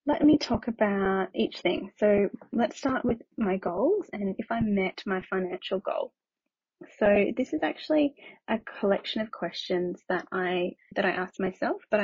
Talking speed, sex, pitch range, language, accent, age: 170 wpm, female, 190-245 Hz, English, Australian, 20-39